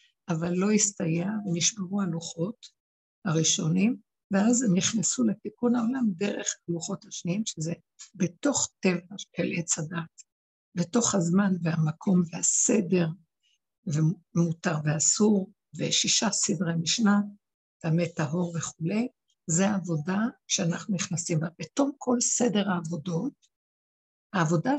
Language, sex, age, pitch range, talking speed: Hebrew, female, 60-79, 170-215 Hz, 100 wpm